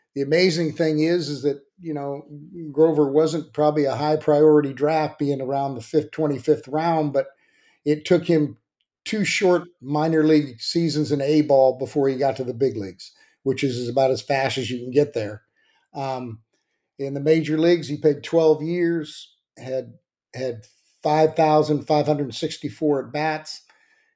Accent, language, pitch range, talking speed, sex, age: American, English, 140-155 Hz, 155 wpm, male, 50-69